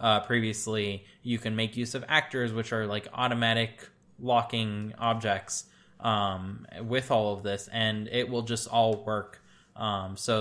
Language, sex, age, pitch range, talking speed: English, male, 10-29, 105-125 Hz, 155 wpm